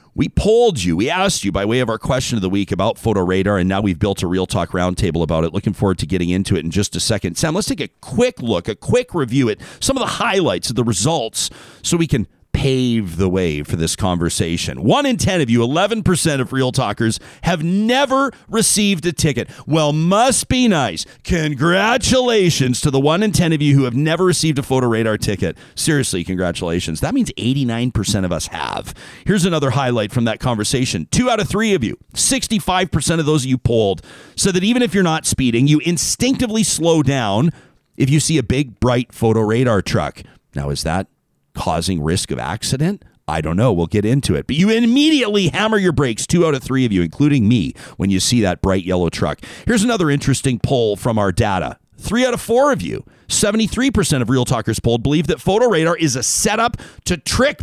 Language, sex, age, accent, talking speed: English, male, 40-59, American, 215 wpm